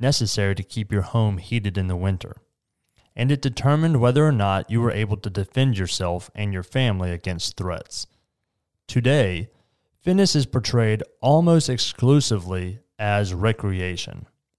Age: 30-49